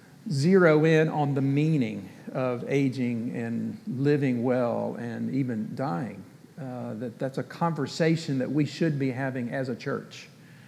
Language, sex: English, male